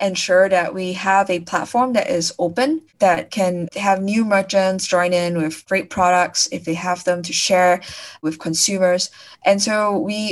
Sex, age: female, 20-39